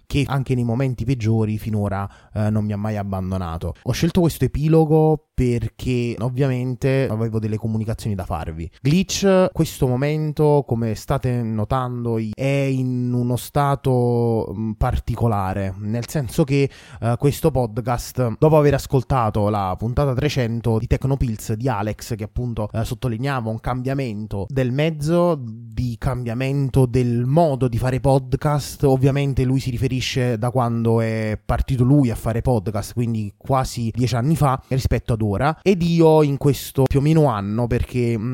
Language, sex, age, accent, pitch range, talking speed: Italian, male, 20-39, native, 115-140 Hz, 145 wpm